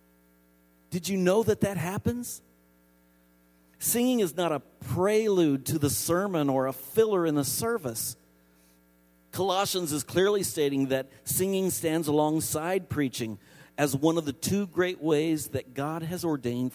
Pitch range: 115-160 Hz